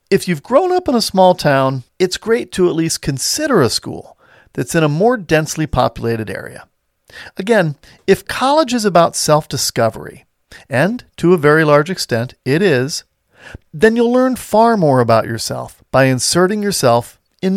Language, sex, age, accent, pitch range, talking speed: English, male, 40-59, American, 130-190 Hz, 165 wpm